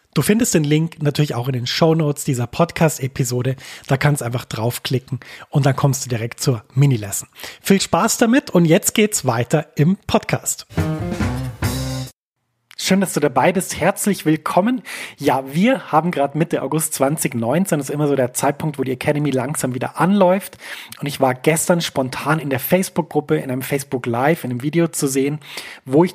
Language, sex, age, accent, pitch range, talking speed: German, male, 30-49, German, 130-165 Hz, 175 wpm